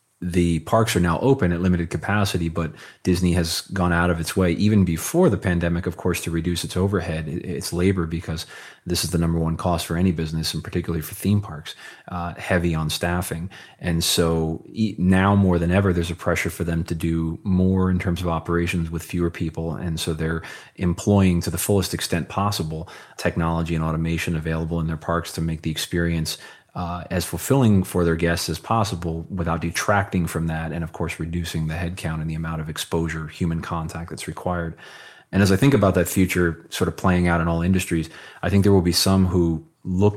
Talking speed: 205 wpm